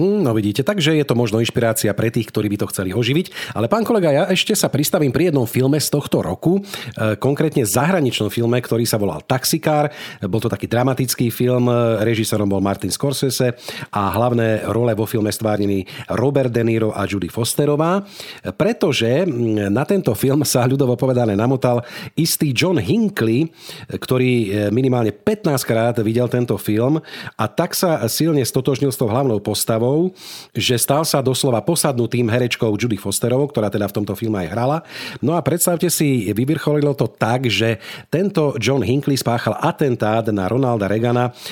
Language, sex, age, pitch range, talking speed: Slovak, male, 40-59, 110-140 Hz, 165 wpm